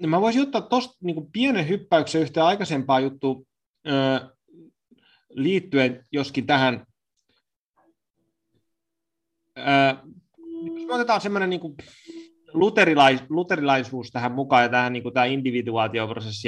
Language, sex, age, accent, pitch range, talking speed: Finnish, male, 30-49, native, 115-155 Hz, 105 wpm